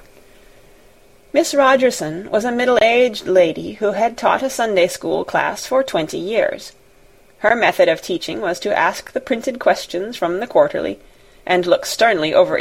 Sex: female